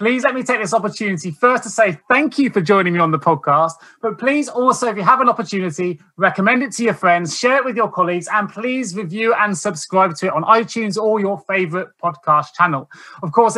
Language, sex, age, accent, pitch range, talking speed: English, male, 20-39, British, 175-230 Hz, 225 wpm